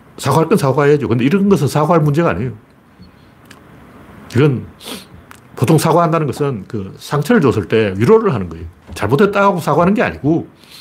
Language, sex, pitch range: Korean, male, 105-160 Hz